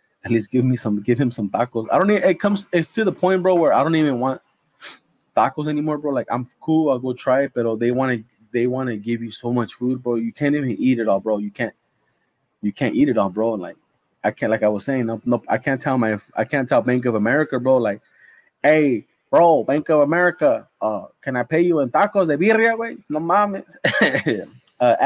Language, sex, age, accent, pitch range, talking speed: English, male, 20-39, American, 115-145 Hz, 245 wpm